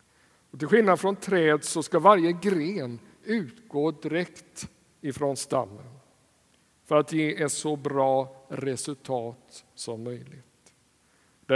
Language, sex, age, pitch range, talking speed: Swedish, male, 60-79, 125-160 Hz, 115 wpm